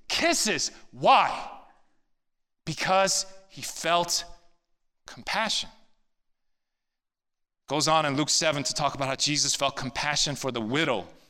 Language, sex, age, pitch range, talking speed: English, male, 30-49, 135-195 Hz, 110 wpm